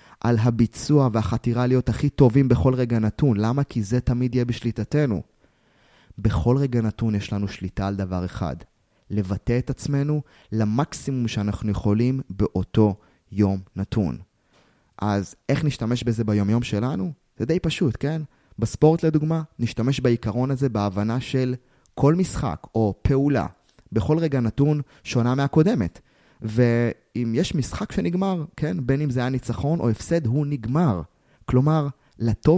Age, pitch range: 20-39, 110-140 Hz